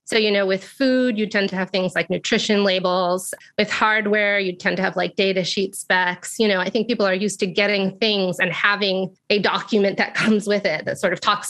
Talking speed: 235 wpm